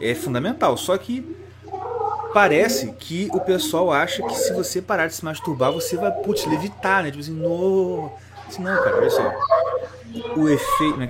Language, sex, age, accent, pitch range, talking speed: Portuguese, male, 30-49, Brazilian, 105-160 Hz, 175 wpm